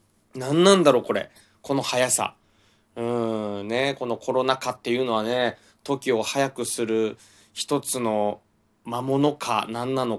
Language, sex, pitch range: Japanese, male, 110-140 Hz